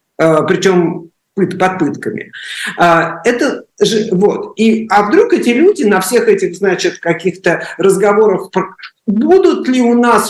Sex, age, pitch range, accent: male, 50-69, 160-230 Hz, native